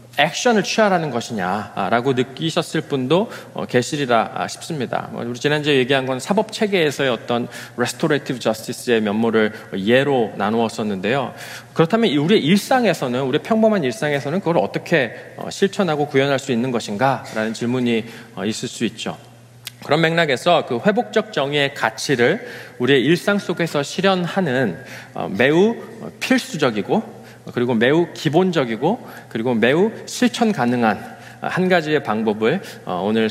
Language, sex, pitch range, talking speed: English, male, 120-170 Hz, 110 wpm